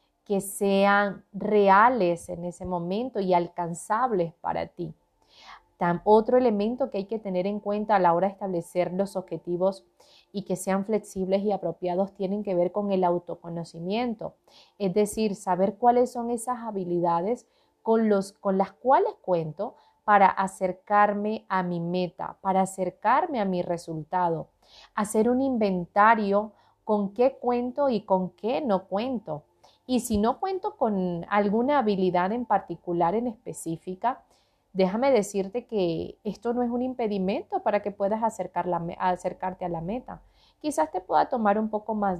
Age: 30-49